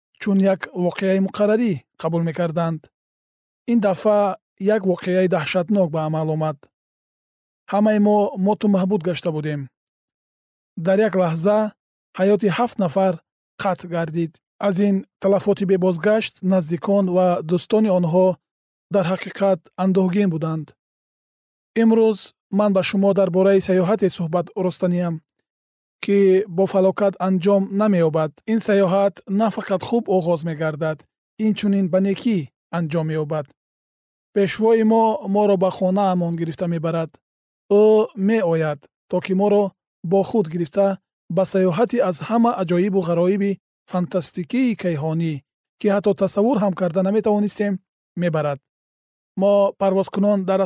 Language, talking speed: Persian, 125 wpm